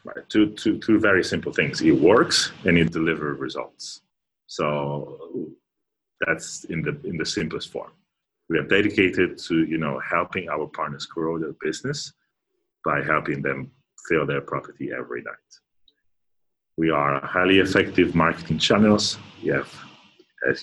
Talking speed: 145 wpm